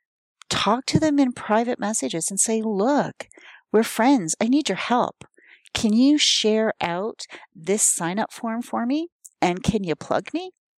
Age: 40-59